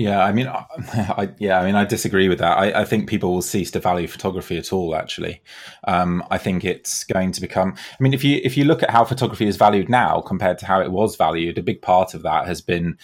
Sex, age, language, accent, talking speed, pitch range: male, 20-39, English, British, 255 wpm, 85-95 Hz